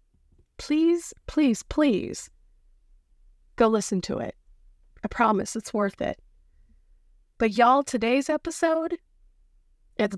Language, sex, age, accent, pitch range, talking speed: English, female, 20-39, American, 195-250 Hz, 100 wpm